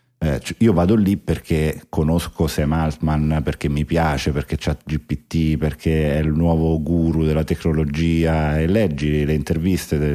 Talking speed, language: 155 wpm, Italian